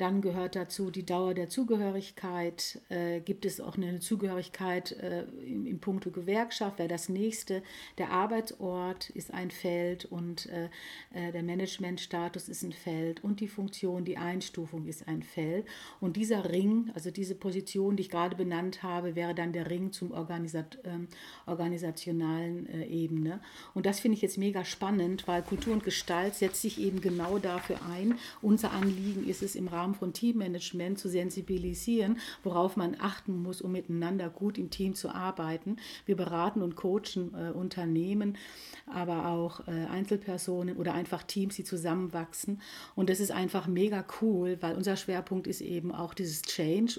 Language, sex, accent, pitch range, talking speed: German, female, German, 175-195 Hz, 165 wpm